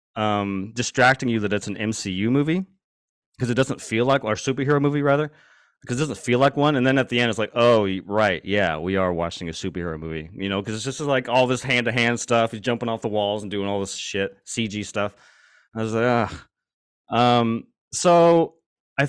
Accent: American